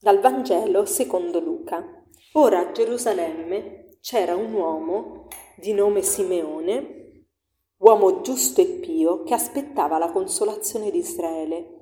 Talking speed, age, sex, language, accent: 115 wpm, 40-59, female, Italian, native